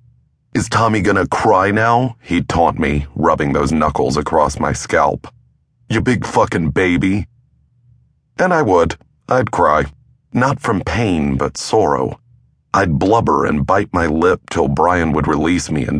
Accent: American